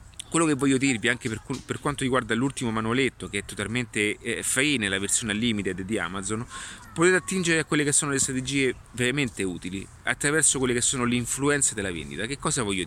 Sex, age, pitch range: male, 30-49, 105-135 Hz